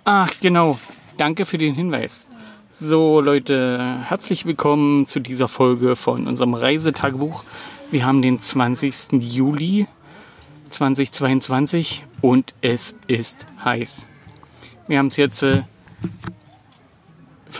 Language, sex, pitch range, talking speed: German, male, 125-160 Hz, 105 wpm